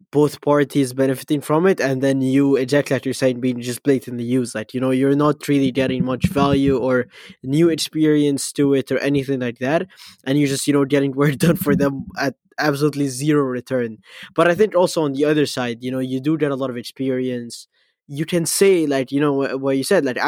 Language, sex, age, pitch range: English, male, 20-39, 135-160 Hz